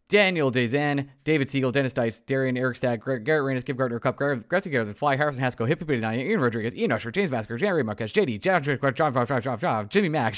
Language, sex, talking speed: English, male, 200 wpm